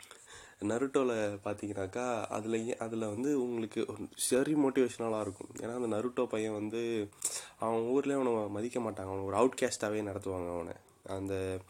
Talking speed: 130 wpm